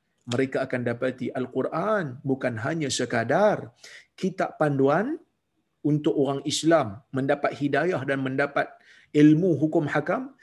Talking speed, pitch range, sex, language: 110 wpm, 130-185 Hz, male, Malayalam